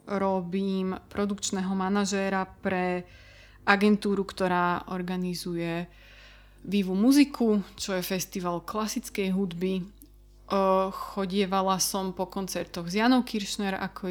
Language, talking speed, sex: Slovak, 95 wpm, female